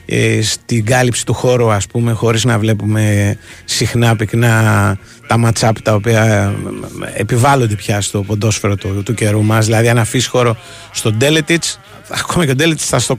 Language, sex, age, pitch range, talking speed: Greek, male, 30-49, 110-140 Hz, 160 wpm